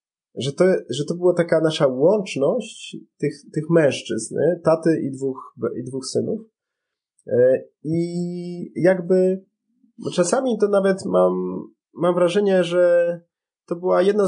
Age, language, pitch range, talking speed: 20-39, Polish, 135-190 Hz, 135 wpm